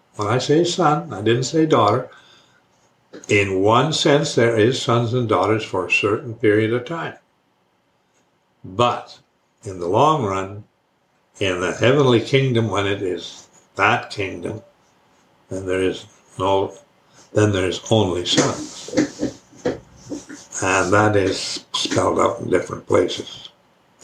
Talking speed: 130 wpm